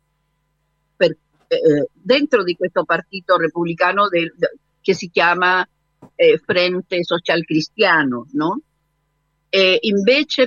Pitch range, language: 165-205 Hz, Italian